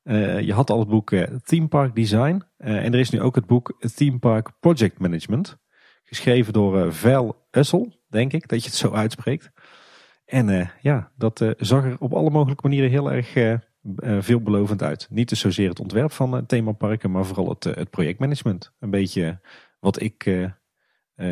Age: 40-59